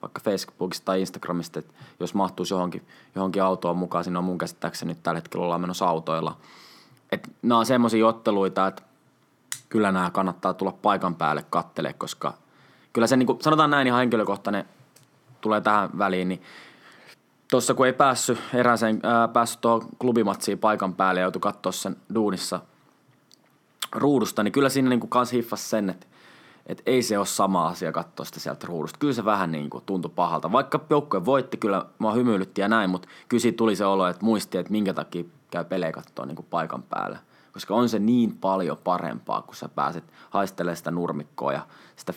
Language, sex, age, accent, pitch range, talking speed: Finnish, male, 20-39, native, 90-115 Hz, 180 wpm